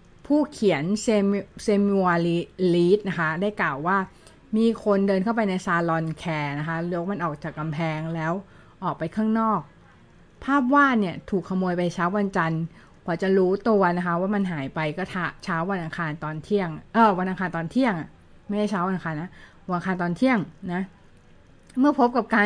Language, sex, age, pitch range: Thai, female, 20-39, 165-210 Hz